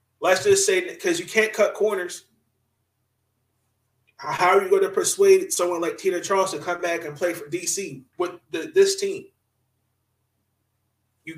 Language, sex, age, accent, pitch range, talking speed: English, male, 30-49, American, 115-195 Hz, 160 wpm